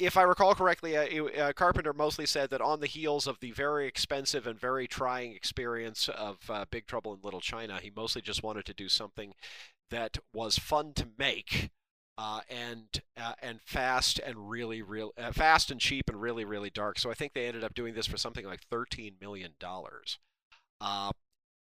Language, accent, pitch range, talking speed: English, American, 115-150 Hz, 195 wpm